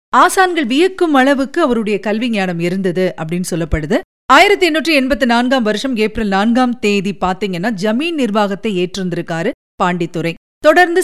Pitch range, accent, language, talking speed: 195-285 Hz, native, Tamil, 115 wpm